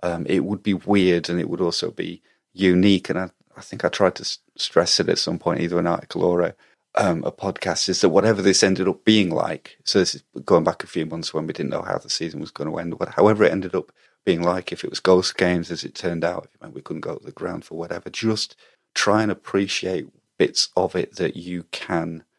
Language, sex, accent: English, male, British